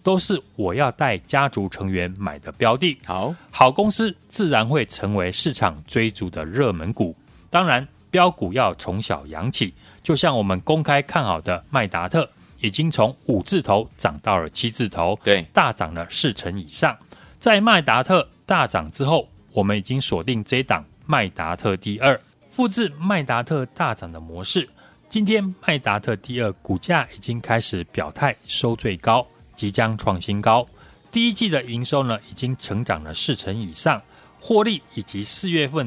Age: 30-49